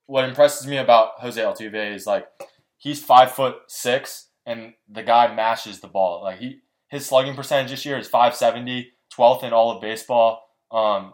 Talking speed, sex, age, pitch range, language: 180 wpm, male, 20-39, 105-125 Hz, English